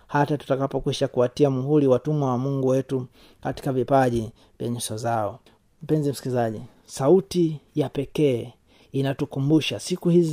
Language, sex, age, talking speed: Swahili, male, 30-49, 120 wpm